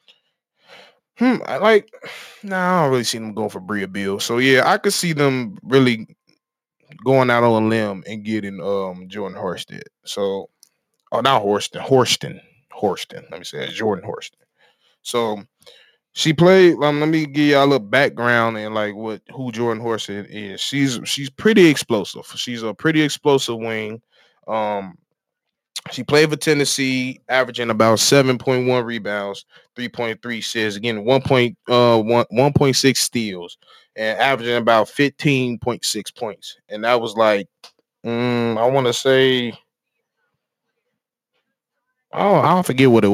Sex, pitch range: male, 110-140 Hz